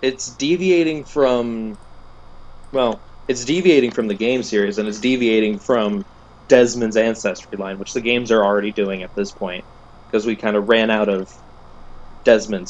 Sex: male